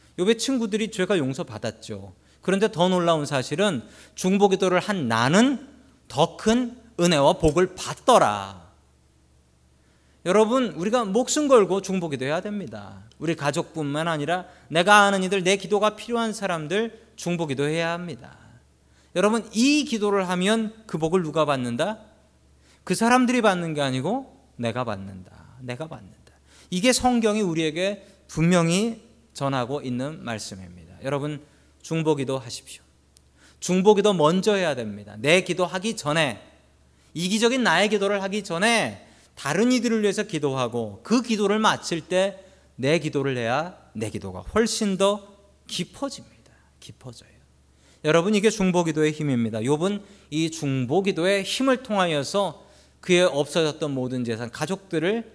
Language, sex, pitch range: Korean, male, 120-205 Hz